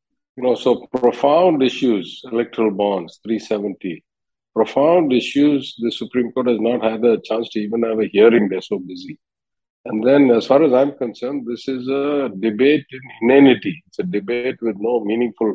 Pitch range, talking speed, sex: 110-130 Hz, 170 wpm, male